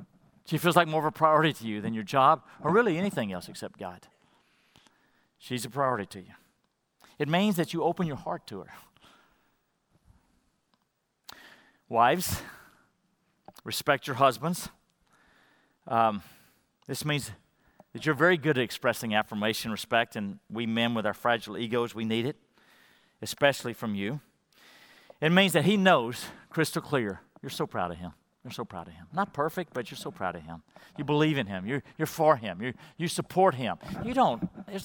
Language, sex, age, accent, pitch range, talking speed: English, male, 50-69, American, 110-155 Hz, 170 wpm